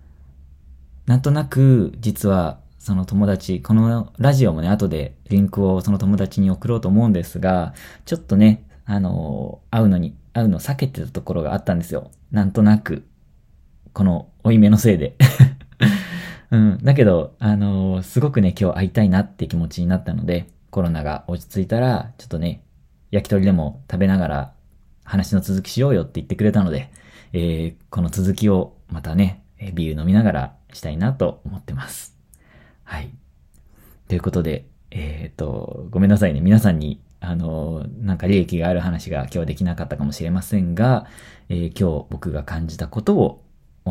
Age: 20-39